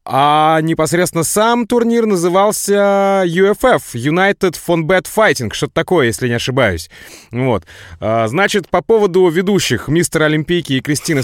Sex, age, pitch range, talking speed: male, 30-49, 130-180 Hz, 135 wpm